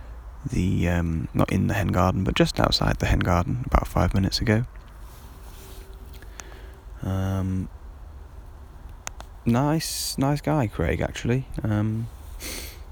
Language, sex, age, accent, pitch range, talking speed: English, male, 20-39, British, 75-100 Hz, 110 wpm